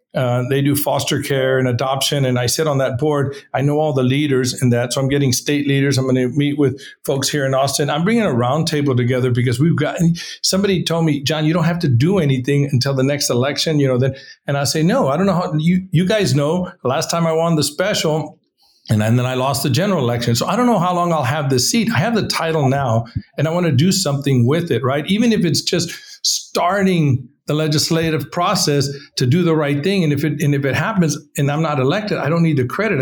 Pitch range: 130-165 Hz